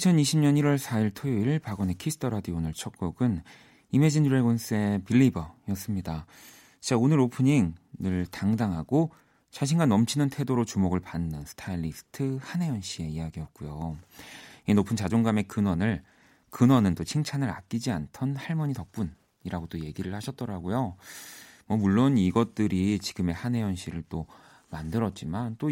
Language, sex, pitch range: Korean, male, 90-125 Hz